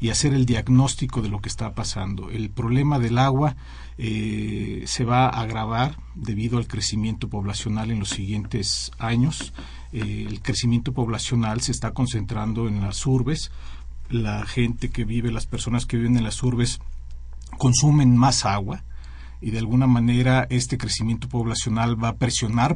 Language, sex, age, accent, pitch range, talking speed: Spanish, male, 50-69, Mexican, 110-125 Hz, 160 wpm